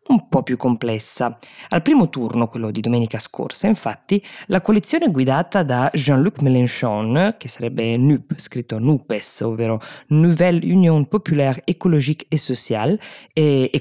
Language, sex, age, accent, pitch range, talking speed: Italian, female, 20-39, native, 120-180 Hz, 140 wpm